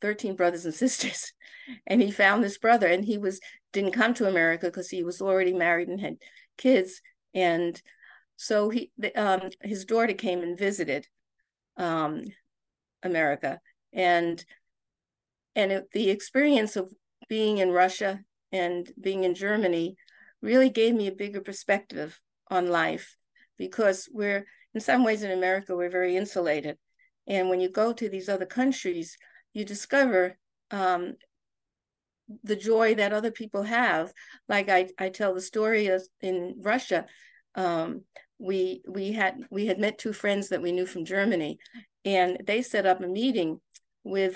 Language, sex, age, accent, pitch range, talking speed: English, female, 50-69, American, 185-225 Hz, 155 wpm